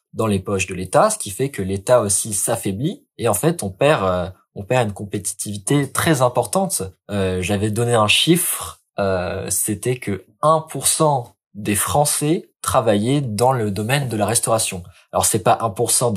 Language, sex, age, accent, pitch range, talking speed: French, male, 20-39, French, 100-135 Hz, 170 wpm